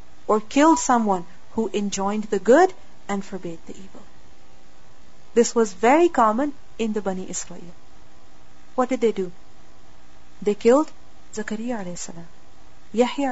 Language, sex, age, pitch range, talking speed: English, female, 40-59, 195-250 Hz, 130 wpm